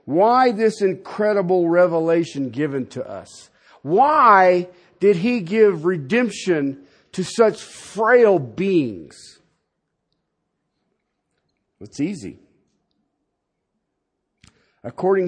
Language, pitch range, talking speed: English, 180-255 Hz, 75 wpm